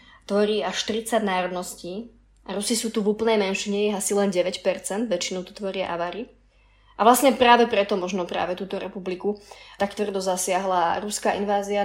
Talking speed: 155 wpm